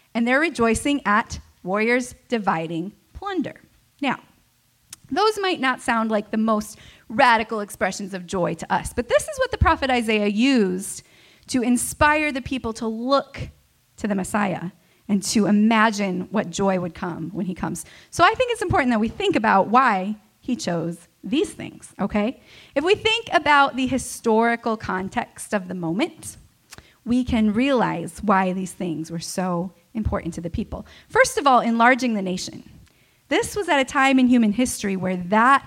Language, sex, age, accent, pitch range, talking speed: English, female, 30-49, American, 190-265 Hz, 170 wpm